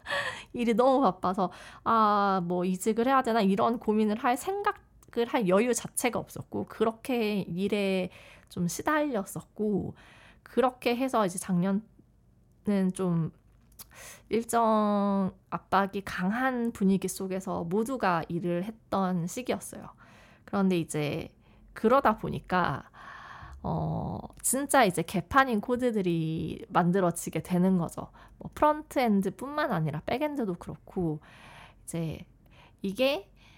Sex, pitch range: female, 180-250 Hz